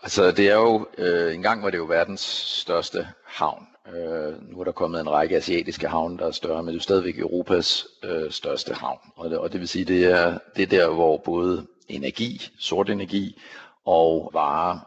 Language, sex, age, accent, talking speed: Danish, male, 60-79, native, 200 wpm